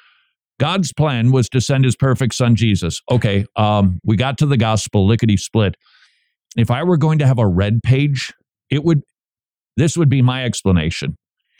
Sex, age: male, 50-69